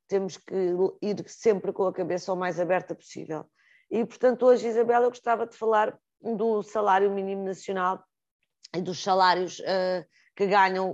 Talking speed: 160 wpm